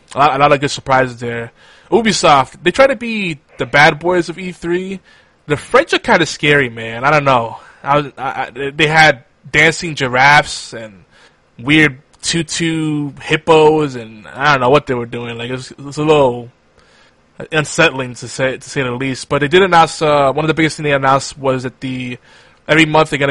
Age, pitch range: 20-39, 125-150 Hz